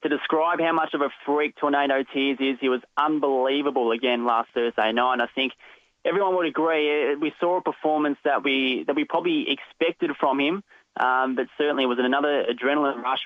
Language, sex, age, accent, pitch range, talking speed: English, male, 20-39, Australian, 125-145 Hz, 195 wpm